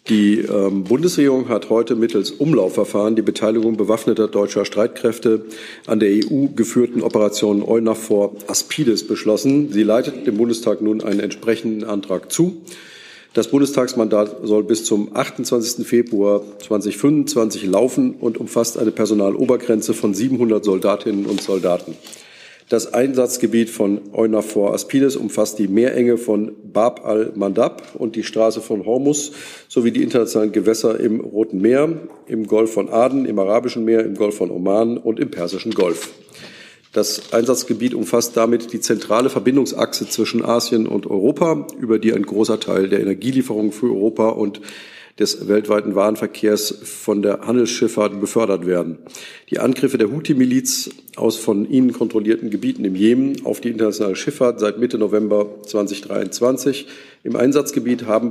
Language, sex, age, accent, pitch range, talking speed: German, male, 50-69, German, 105-120 Hz, 140 wpm